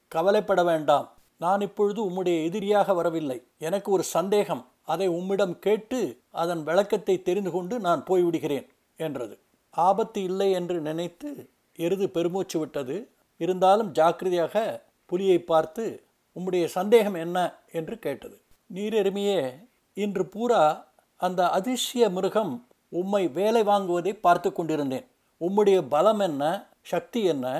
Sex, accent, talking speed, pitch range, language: male, native, 110 wpm, 175-210 Hz, Tamil